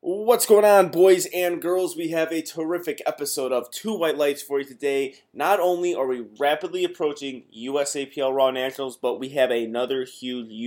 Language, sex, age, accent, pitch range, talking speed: English, male, 20-39, American, 125-155 Hz, 180 wpm